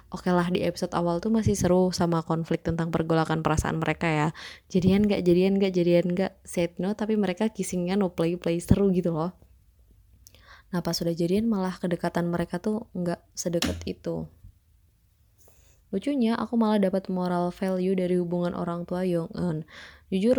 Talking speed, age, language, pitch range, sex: 160 wpm, 20-39, Indonesian, 165-185 Hz, female